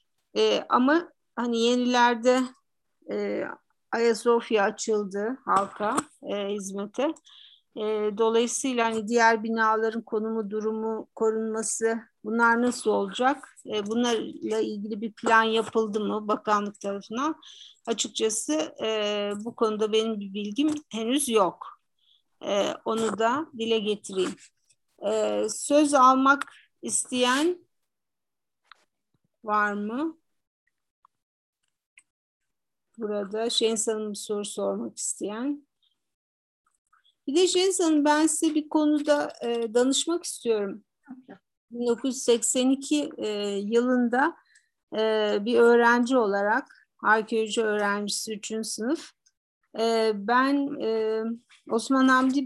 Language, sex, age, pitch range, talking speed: Turkish, female, 50-69, 215-260 Hz, 90 wpm